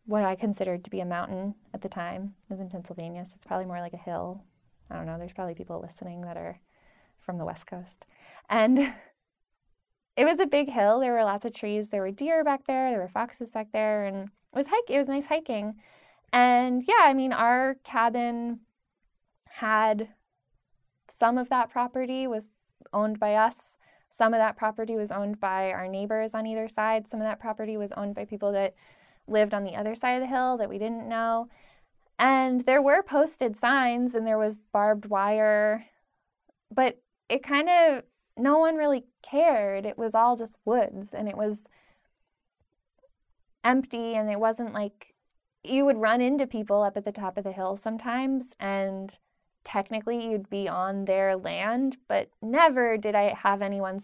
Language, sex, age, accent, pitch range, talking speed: English, female, 10-29, American, 200-250 Hz, 185 wpm